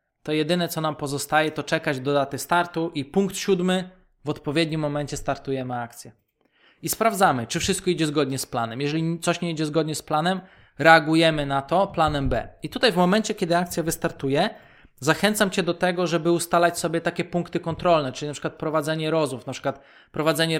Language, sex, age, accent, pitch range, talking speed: Polish, male, 20-39, native, 140-170 Hz, 180 wpm